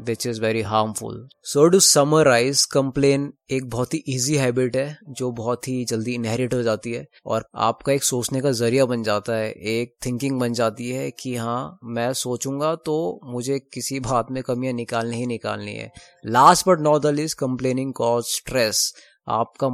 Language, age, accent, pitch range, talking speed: Hindi, 20-39, native, 120-140 Hz, 180 wpm